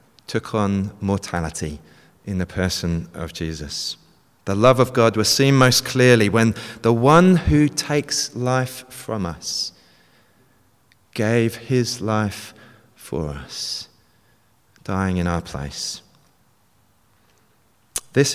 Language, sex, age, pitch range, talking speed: English, male, 30-49, 100-120 Hz, 110 wpm